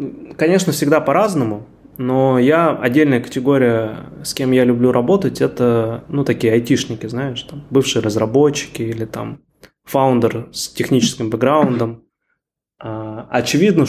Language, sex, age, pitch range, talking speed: Russian, male, 20-39, 115-130 Hz, 115 wpm